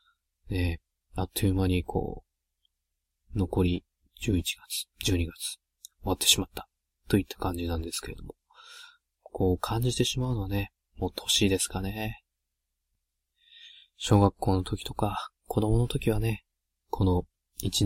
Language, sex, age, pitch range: Japanese, male, 20-39, 75-105 Hz